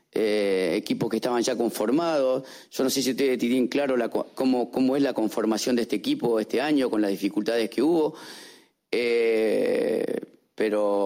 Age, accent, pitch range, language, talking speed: 40-59, Argentinian, 120-155 Hz, French, 165 wpm